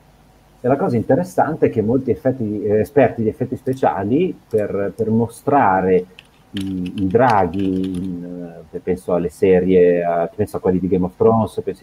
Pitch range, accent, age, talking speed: 95-125 Hz, native, 40-59, 155 wpm